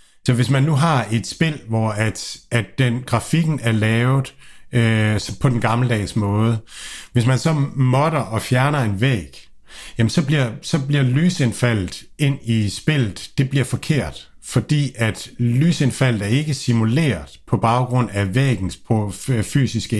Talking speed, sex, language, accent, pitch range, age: 155 wpm, male, Danish, native, 110-135 Hz, 60-79